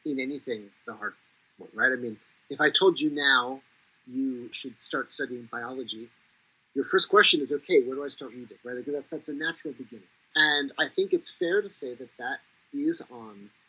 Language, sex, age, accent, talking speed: English, male, 30-49, American, 200 wpm